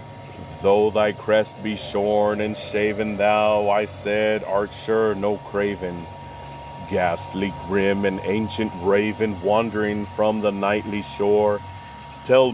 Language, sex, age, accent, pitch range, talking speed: English, male, 30-49, American, 100-115 Hz, 120 wpm